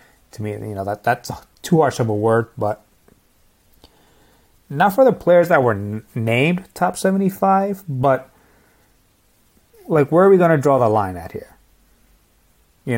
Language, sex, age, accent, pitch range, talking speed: English, male, 30-49, American, 115-165 Hz, 160 wpm